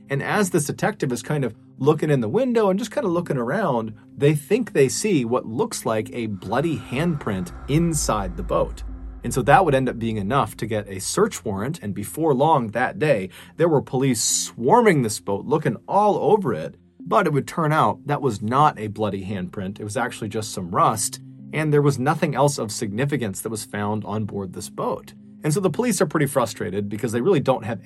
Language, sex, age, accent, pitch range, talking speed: English, male, 30-49, American, 105-145 Hz, 220 wpm